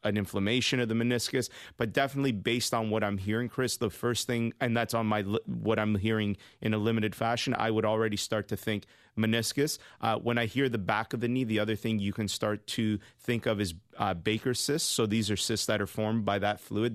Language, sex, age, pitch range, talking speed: English, male, 30-49, 105-115 Hz, 235 wpm